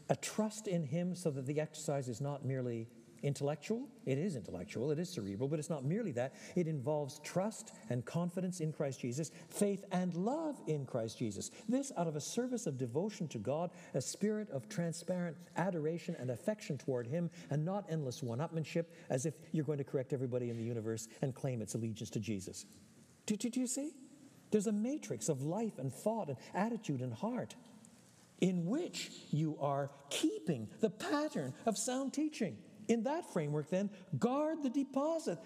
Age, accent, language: 60-79, American, English